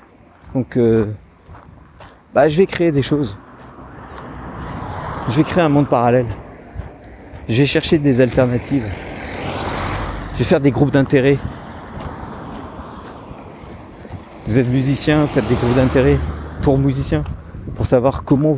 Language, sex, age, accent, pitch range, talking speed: French, male, 50-69, French, 110-140 Hz, 125 wpm